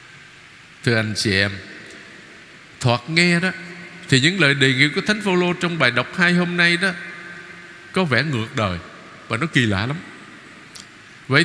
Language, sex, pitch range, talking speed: Vietnamese, male, 125-180 Hz, 170 wpm